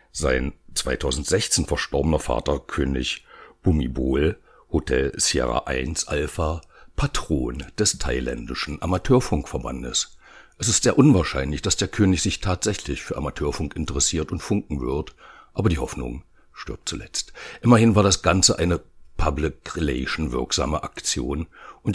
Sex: male